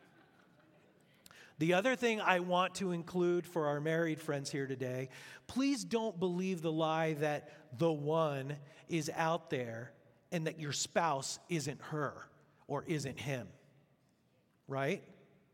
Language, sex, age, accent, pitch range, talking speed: English, male, 40-59, American, 145-180 Hz, 130 wpm